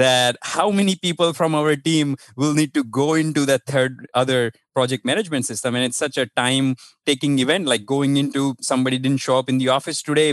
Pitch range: 130-160 Hz